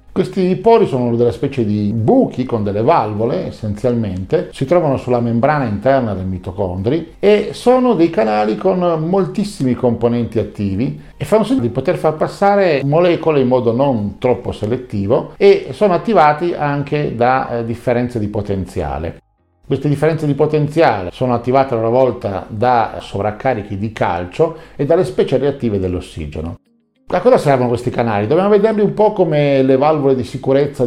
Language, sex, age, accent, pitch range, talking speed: Italian, male, 50-69, native, 105-145 Hz, 155 wpm